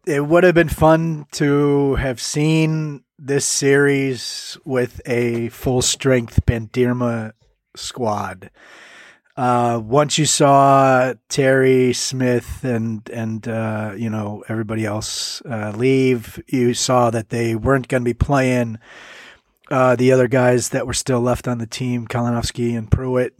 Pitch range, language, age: 115-130 Hz, English, 30-49